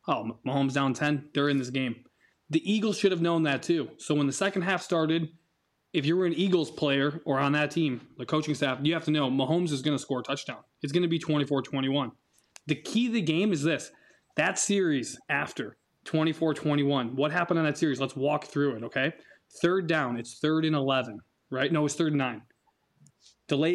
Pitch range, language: 140-175 Hz, English